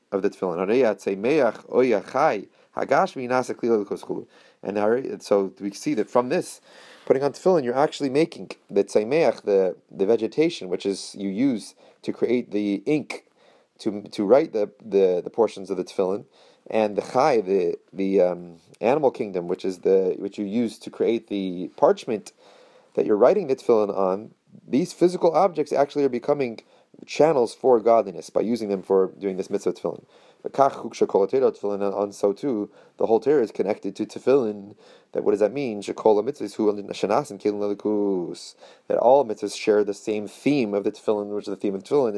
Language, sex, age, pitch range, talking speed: English, male, 30-49, 105-175 Hz, 170 wpm